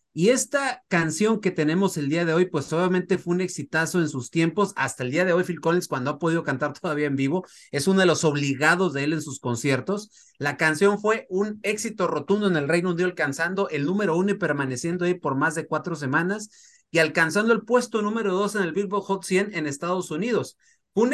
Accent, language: Mexican, Spanish